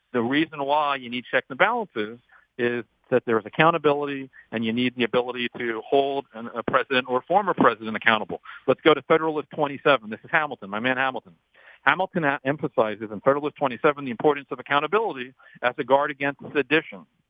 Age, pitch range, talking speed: 50-69, 125-155 Hz, 175 wpm